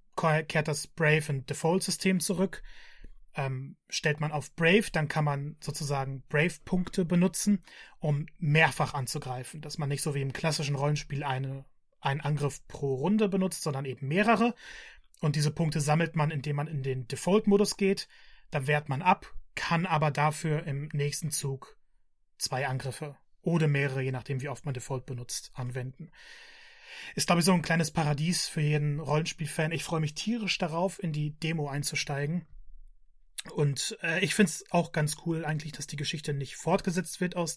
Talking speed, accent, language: 170 wpm, German, German